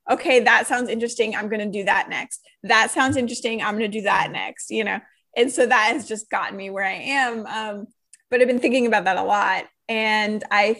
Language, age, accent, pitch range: English, 20-39, American, 210-280 Hz